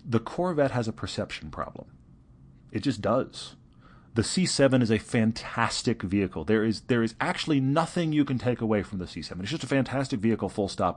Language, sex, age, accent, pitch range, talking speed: English, male, 40-59, American, 100-145 Hz, 190 wpm